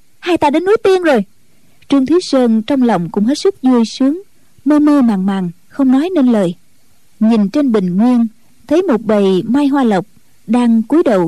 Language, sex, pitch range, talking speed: Vietnamese, female, 210-275 Hz, 195 wpm